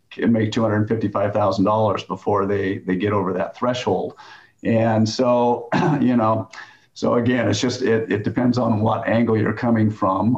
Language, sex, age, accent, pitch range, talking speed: English, male, 50-69, American, 105-115 Hz, 155 wpm